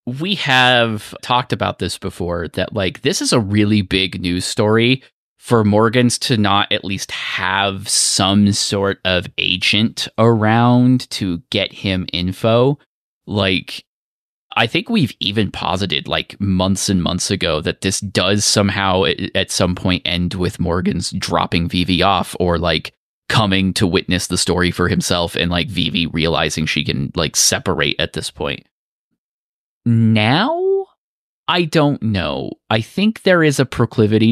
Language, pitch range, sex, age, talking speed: English, 90-115 Hz, male, 20-39, 150 wpm